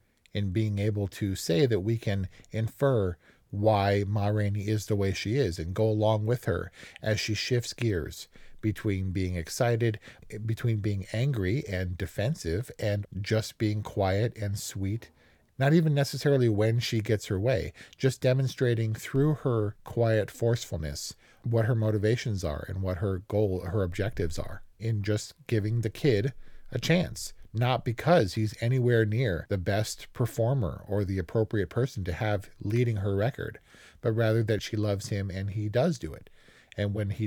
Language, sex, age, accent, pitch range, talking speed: English, male, 40-59, American, 100-120 Hz, 165 wpm